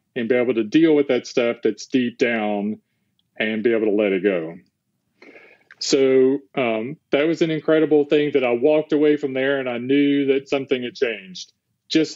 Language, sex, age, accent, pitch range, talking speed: English, male, 40-59, American, 115-140 Hz, 190 wpm